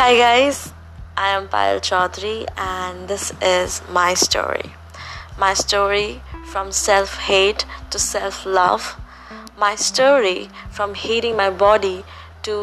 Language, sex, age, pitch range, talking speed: English, female, 20-39, 185-215 Hz, 115 wpm